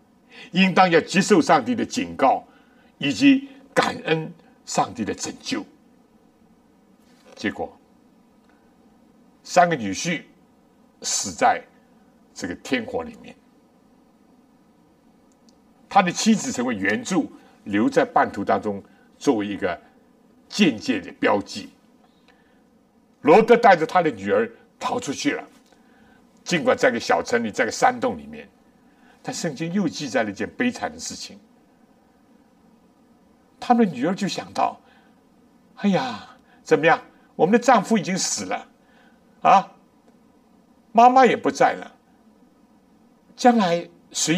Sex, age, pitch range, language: male, 60-79, 245-250 Hz, Chinese